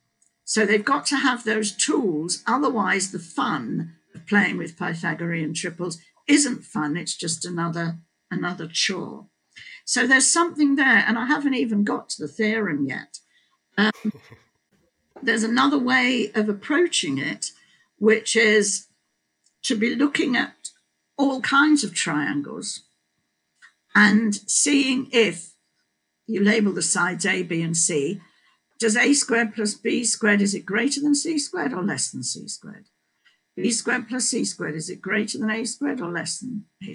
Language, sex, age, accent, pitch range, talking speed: English, female, 50-69, British, 180-255 Hz, 155 wpm